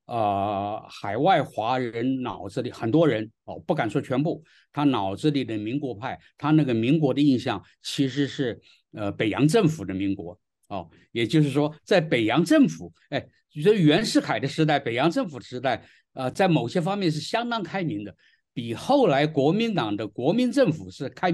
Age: 50-69